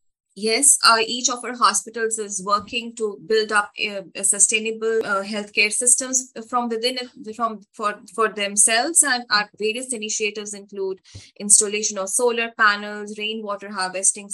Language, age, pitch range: English, 20-39, 205-245 Hz